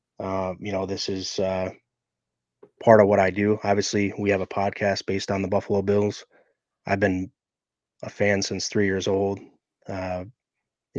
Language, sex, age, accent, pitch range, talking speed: English, male, 20-39, American, 95-105 Hz, 165 wpm